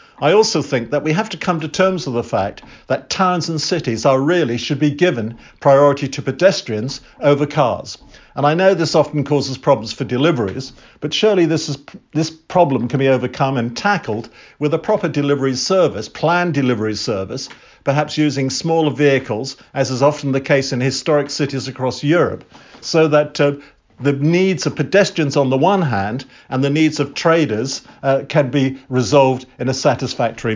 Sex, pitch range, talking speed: male, 130-160 Hz, 185 wpm